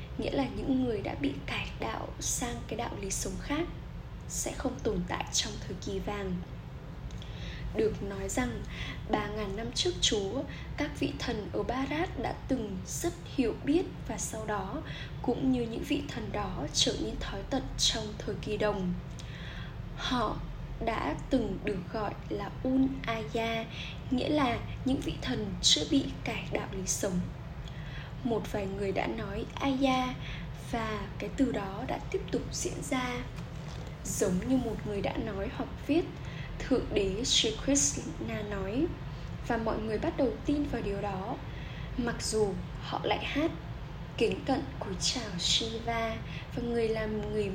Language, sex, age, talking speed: Vietnamese, female, 10-29, 160 wpm